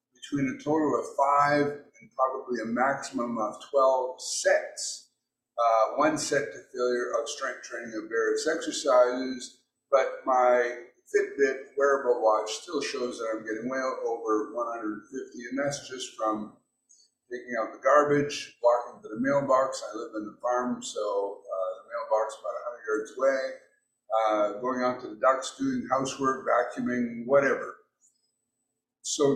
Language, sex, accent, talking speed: English, male, American, 150 wpm